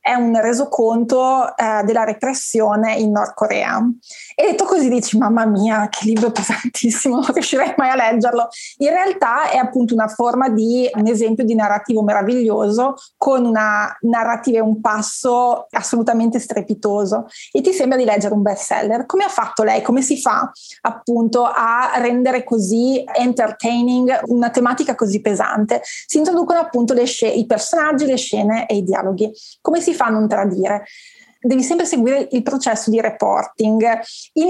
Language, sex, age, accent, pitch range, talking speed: Italian, female, 20-39, native, 225-285 Hz, 160 wpm